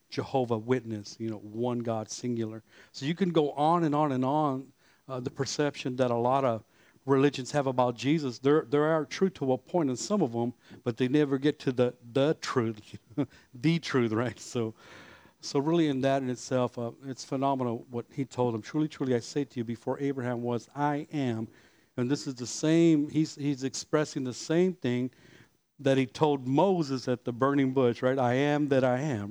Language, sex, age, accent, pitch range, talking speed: English, male, 50-69, American, 120-145 Hz, 205 wpm